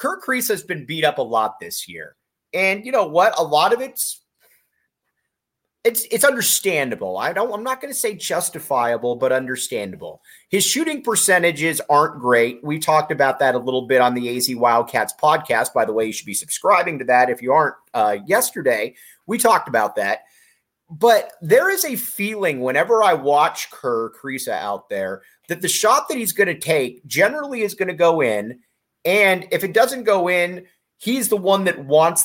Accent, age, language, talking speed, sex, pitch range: American, 30-49, English, 185 wpm, male, 135-205 Hz